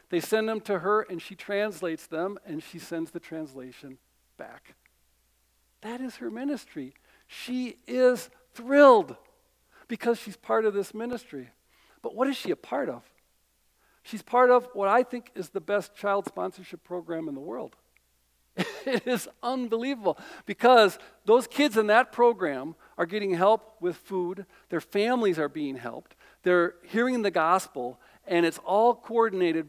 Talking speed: 155 wpm